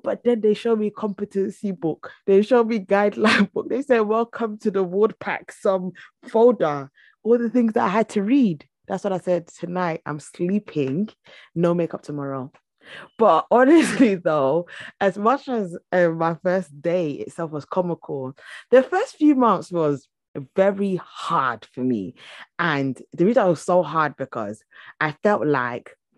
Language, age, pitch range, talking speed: English, 20-39, 130-185 Hz, 165 wpm